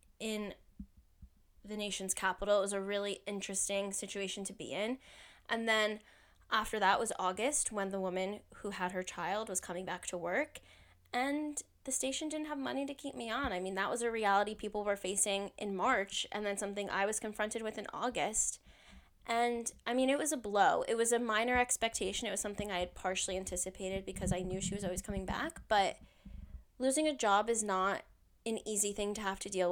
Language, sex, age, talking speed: English, female, 10-29, 205 wpm